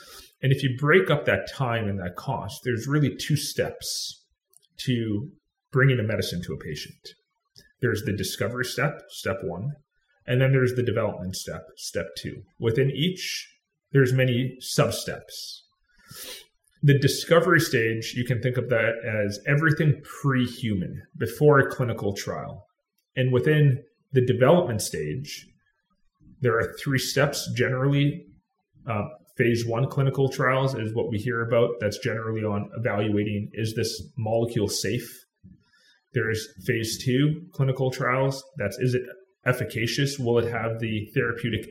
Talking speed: 140 wpm